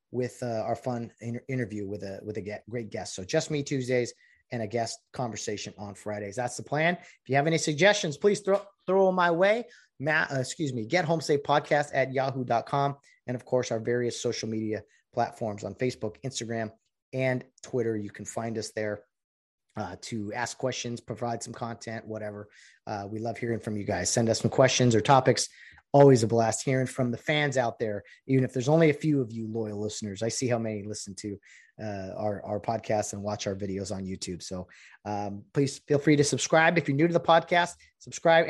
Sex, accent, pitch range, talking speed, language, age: male, American, 110-155 Hz, 210 wpm, English, 30-49